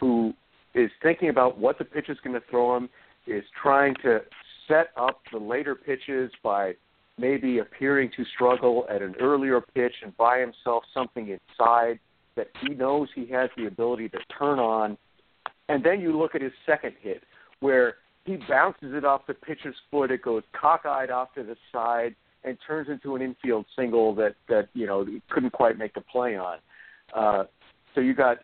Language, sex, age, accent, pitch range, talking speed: English, male, 50-69, American, 110-140 Hz, 185 wpm